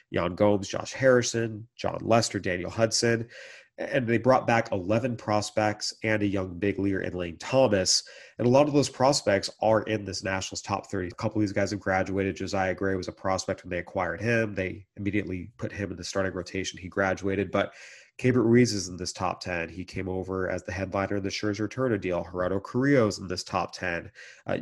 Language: English